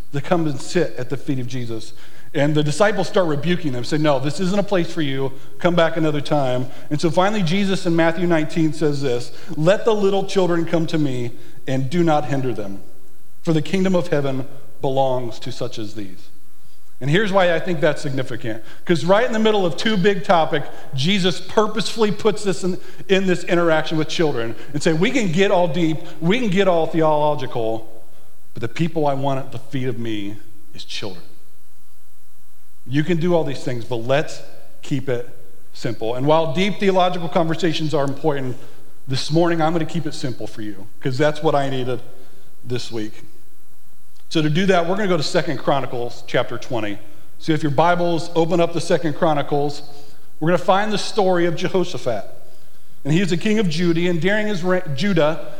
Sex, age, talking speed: male, 40-59, 200 wpm